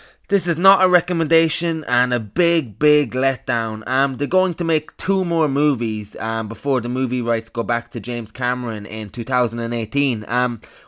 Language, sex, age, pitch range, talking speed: English, male, 20-39, 115-150 Hz, 165 wpm